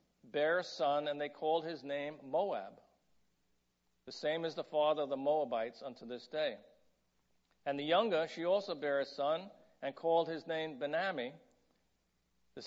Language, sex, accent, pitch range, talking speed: English, male, American, 145-195 Hz, 160 wpm